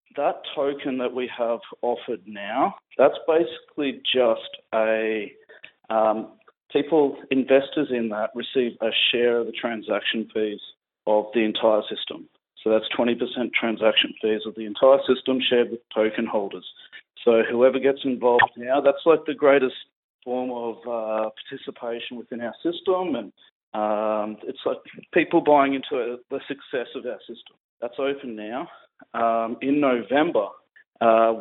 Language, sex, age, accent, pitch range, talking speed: English, male, 40-59, Australian, 115-140 Hz, 145 wpm